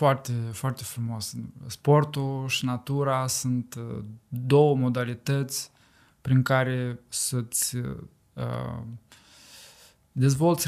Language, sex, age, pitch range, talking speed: Romanian, male, 20-39, 120-135 Hz, 75 wpm